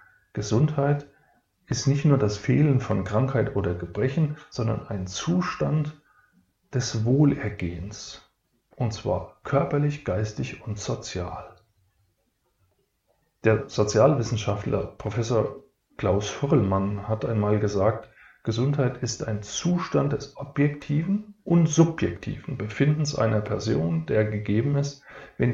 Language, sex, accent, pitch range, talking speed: German, male, German, 105-145 Hz, 105 wpm